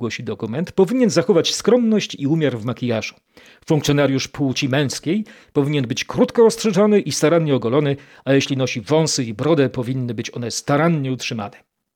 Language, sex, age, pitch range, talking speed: Polish, male, 40-59, 130-195 Hz, 150 wpm